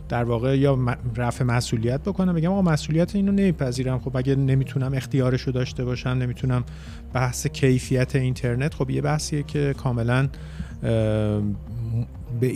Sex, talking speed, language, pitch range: male, 140 wpm, Persian, 115-140 Hz